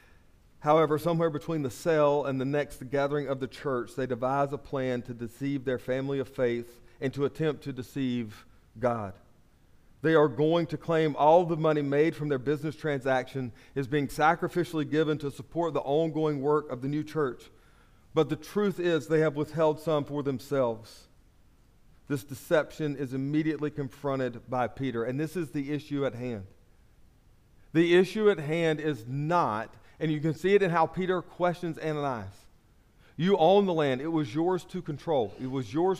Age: 40-59